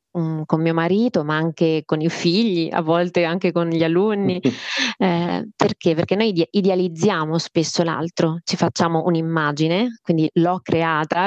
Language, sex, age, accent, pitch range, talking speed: Italian, female, 20-39, native, 170-195 Hz, 150 wpm